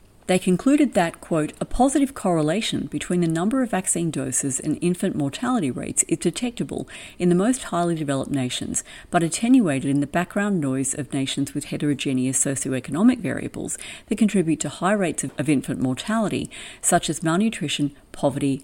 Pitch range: 145-235 Hz